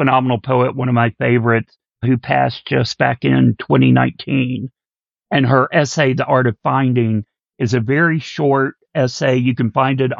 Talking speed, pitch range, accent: 165 wpm, 120-140 Hz, American